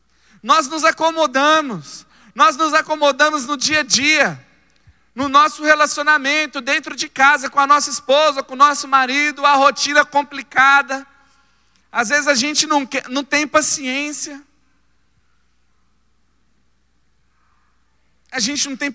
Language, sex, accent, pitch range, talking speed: Portuguese, male, Brazilian, 205-285 Hz, 125 wpm